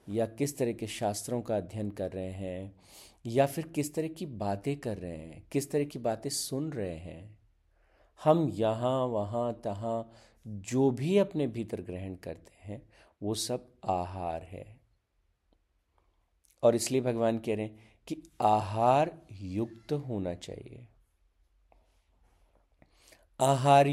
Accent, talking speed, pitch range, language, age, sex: native, 135 wpm, 95-125 Hz, Hindi, 50-69, male